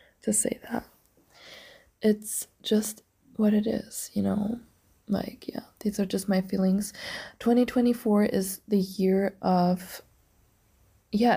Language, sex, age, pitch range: English, female, 20-39, 180-210 Hz